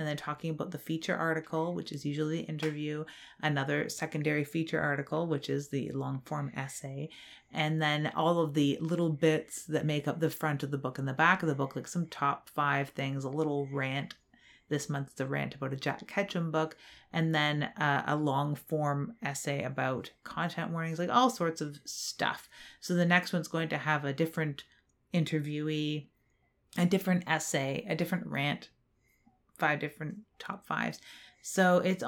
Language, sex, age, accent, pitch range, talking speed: English, female, 30-49, American, 145-175 Hz, 180 wpm